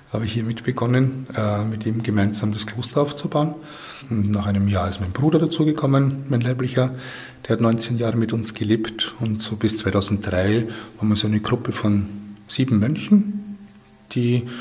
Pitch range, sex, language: 105-125 Hz, male, German